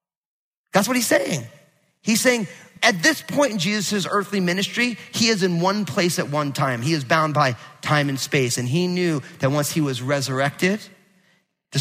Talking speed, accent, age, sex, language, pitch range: 190 wpm, American, 30-49, male, English, 140-185 Hz